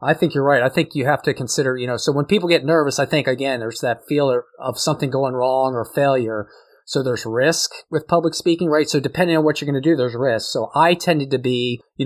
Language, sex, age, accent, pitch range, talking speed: English, male, 30-49, American, 130-155 Hz, 260 wpm